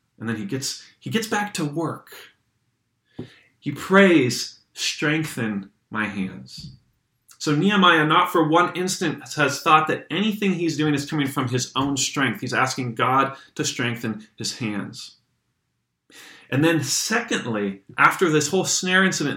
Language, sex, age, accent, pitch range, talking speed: English, male, 30-49, American, 115-160 Hz, 145 wpm